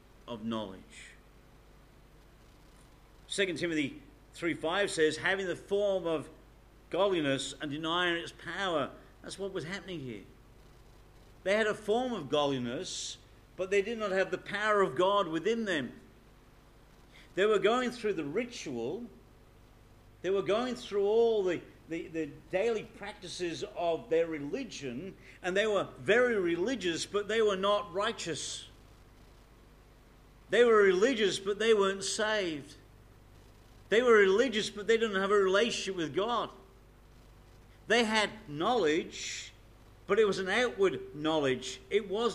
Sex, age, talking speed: male, 50-69, 135 wpm